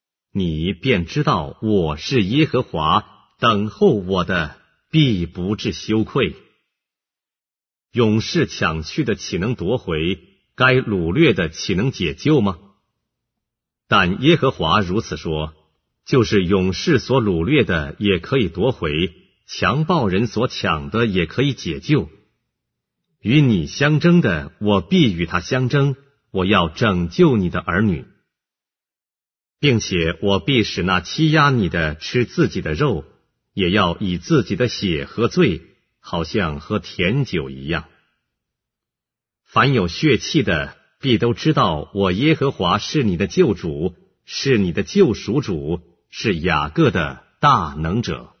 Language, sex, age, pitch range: English, male, 50-69, 90-130 Hz